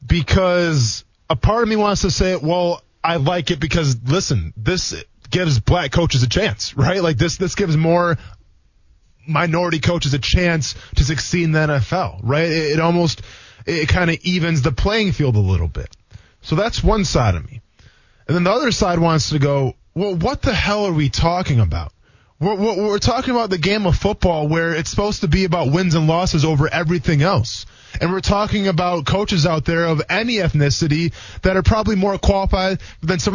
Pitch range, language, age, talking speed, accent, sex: 135-200 Hz, English, 20-39, 195 wpm, American, male